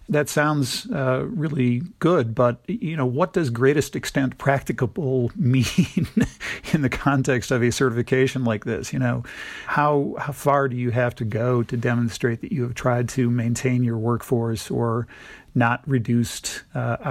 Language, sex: English, male